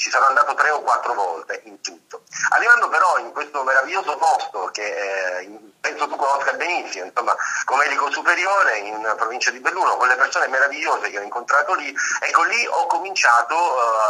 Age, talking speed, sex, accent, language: 30-49, 175 wpm, male, native, Italian